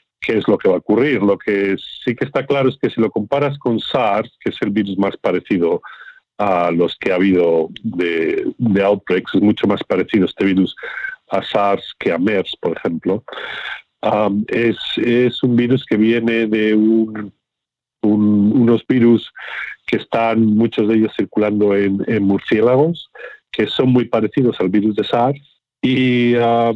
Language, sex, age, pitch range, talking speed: Spanish, male, 50-69, 105-125 Hz, 175 wpm